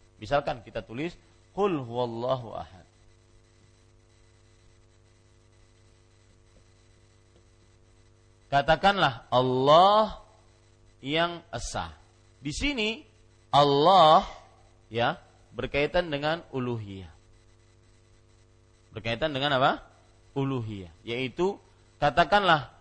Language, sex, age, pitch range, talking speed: Malay, male, 40-59, 110-150 Hz, 60 wpm